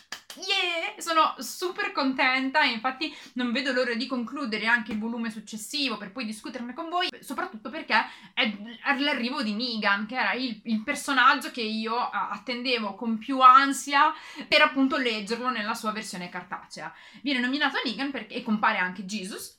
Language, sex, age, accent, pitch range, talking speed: Italian, female, 20-39, native, 215-275 Hz, 155 wpm